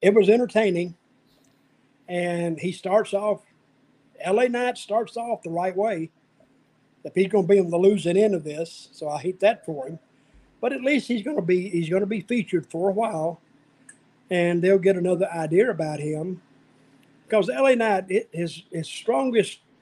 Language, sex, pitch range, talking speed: English, male, 160-205 Hz, 180 wpm